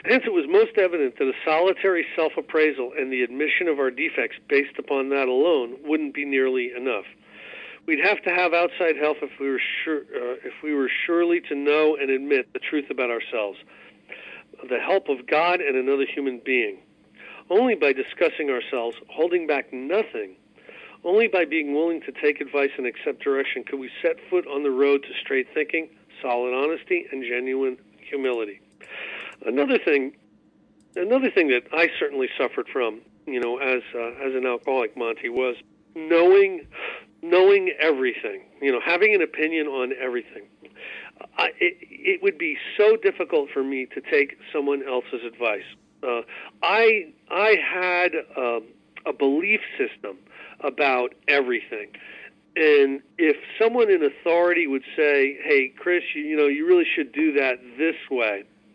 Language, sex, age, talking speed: English, male, 50-69, 155 wpm